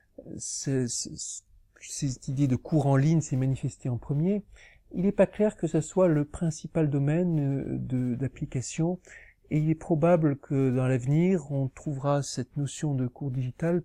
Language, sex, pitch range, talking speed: French, male, 125-155 Hz, 150 wpm